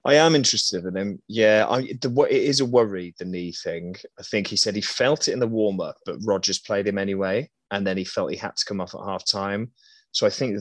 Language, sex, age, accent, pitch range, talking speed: English, male, 20-39, British, 90-115 Hz, 255 wpm